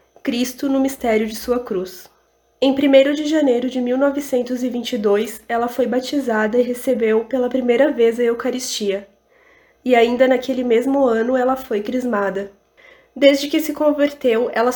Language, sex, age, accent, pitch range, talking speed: Portuguese, female, 20-39, Brazilian, 235-270 Hz, 140 wpm